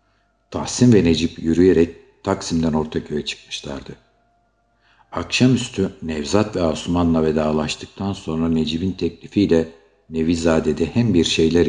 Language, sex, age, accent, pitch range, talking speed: Turkish, male, 60-79, native, 75-95 Hz, 100 wpm